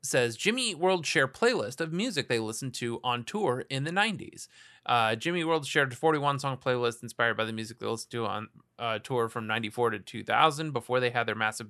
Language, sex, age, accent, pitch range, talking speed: English, male, 30-49, American, 120-160 Hz, 210 wpm